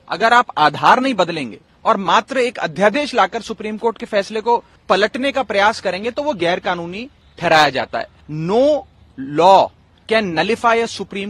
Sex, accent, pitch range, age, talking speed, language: male, native, 190-255 Hz, 30-49, 160 wpm, Hindi